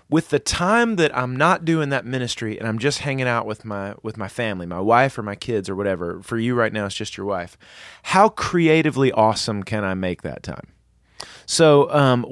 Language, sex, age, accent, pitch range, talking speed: English, male, 30-49, American, 115-155 Hz, 215 wpm